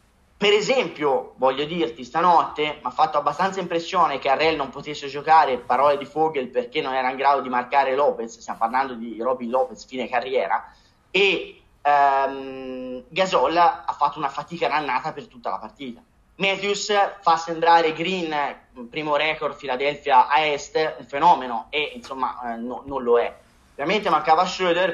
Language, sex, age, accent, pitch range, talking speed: Italian, male, 30-49, native, 130-175 Hz, 160 wpm